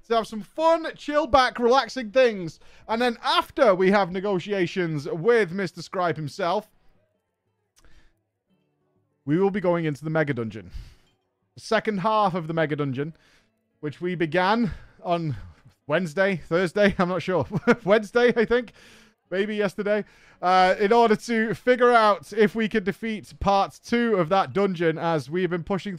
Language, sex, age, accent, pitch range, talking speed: English, male, 30-49, British, 155-215 Hz, 150 wpm